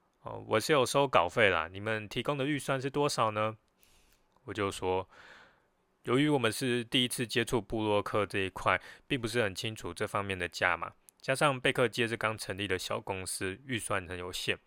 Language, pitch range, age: Chinese, 90-125 Hz, 20-39